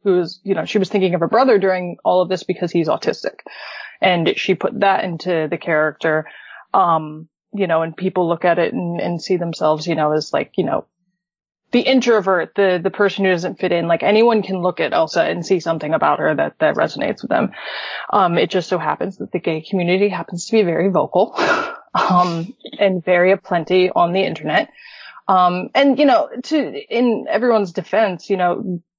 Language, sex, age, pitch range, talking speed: English, female, 20-39, 170-205 Hz, 200 wpm